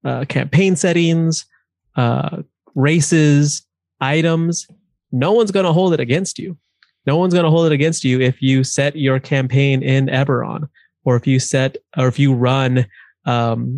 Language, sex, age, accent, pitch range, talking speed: English, male, 20-39, American, 130-155 Hz, 165 wpm